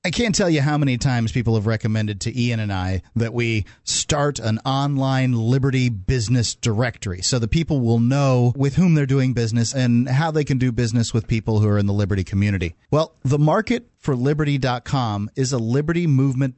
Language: English